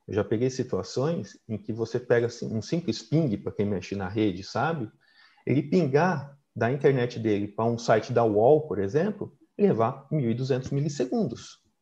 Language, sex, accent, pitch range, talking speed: Portuguese, male, Brazilian, 110-145 Hz, 170 wpm